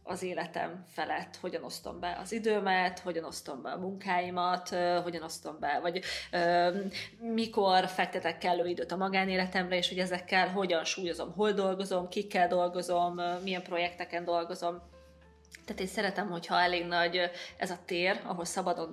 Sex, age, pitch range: female, 20-39, 175-220 Hz